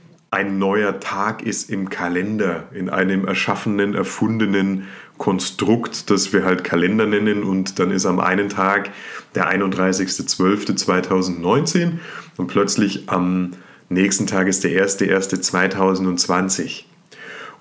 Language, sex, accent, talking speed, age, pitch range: German, male, German, 110 wpm, 30-49, 95-105 Hz